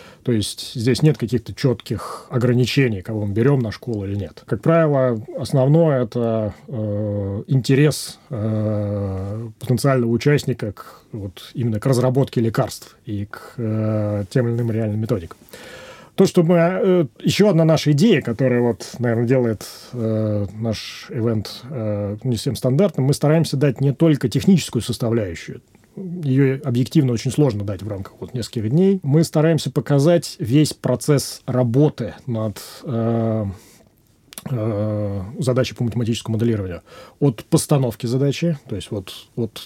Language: Russian